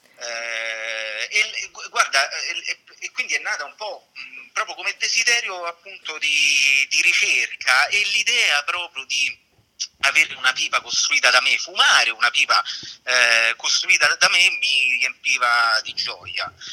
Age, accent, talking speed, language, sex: 30-49, native, 130 wpm, Italian, male